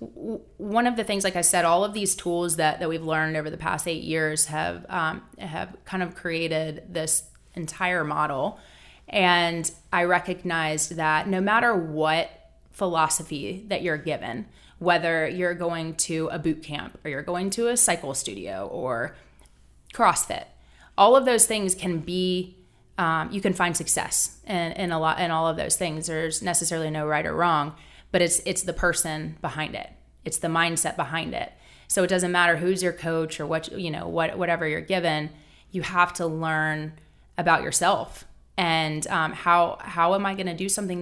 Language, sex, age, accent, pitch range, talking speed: English, female, 20-39, American, 155-180 Hz, 185 wpm